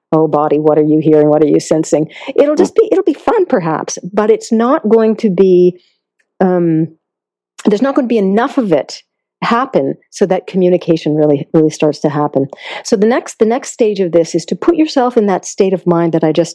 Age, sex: 50-69, female